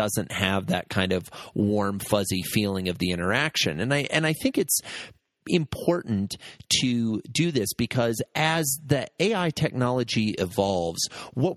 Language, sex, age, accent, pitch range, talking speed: English, male, 30-49, American, 100-135 Hz, 140 wpm